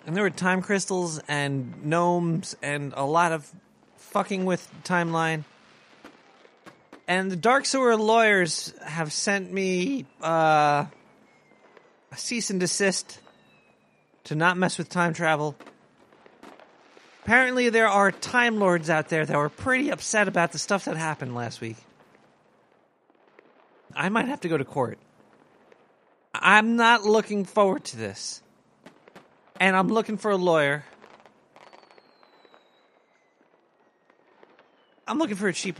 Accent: American